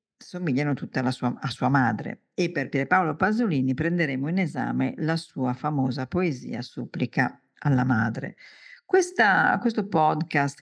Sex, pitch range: female, 135-180 Hz